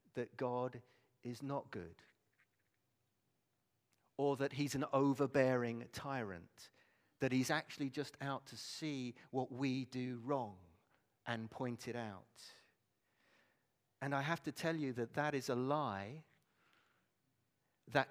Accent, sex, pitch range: British, male, 120-200 Hz